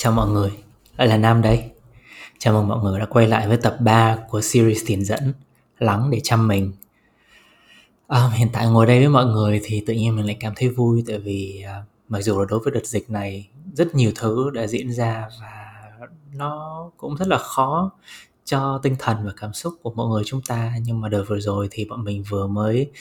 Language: Vietnamese